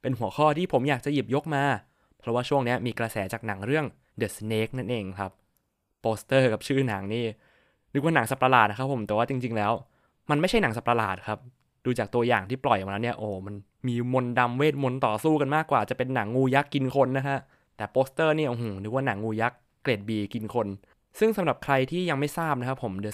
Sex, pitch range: male, 110-140 Hz